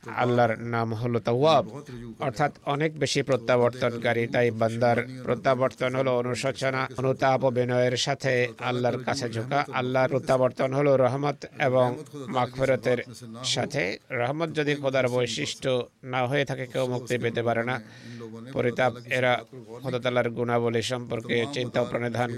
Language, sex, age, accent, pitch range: Bengali, male, 50-69, native, 120-130 Hz